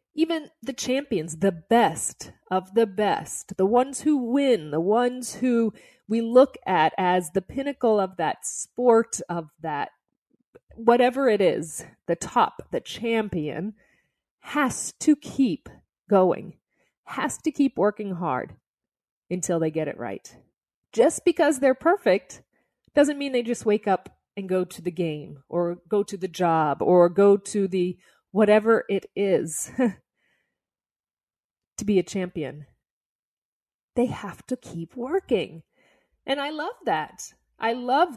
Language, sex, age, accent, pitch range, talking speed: English, female, 30-49, American, 175-245 Hz, 140 wpm